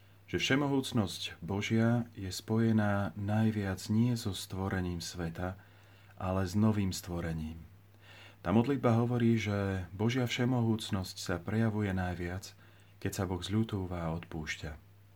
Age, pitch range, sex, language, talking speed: 40-59, 90-110 Hz, male, Slovak, 110 wpm